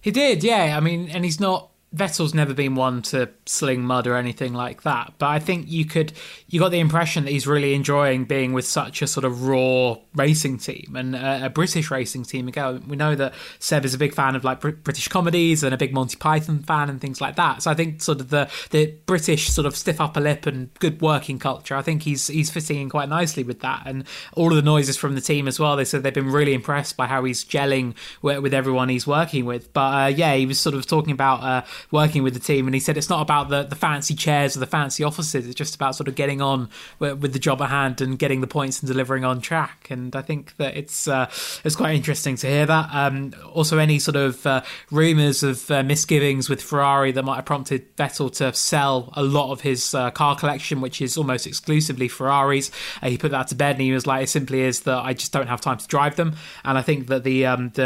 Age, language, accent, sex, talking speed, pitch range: 20-39, English, British, male, 255 wpm, 130-150 Hz